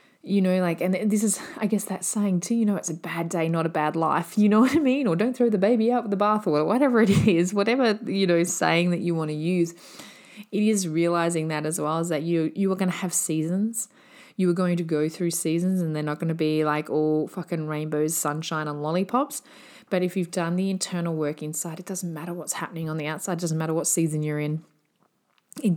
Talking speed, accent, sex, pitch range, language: 245 wpm, Australian, female, 155-195 Hz, English